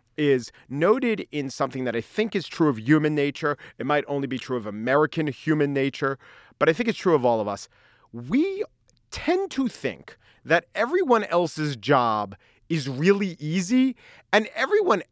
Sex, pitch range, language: male, 125-200 Hz, English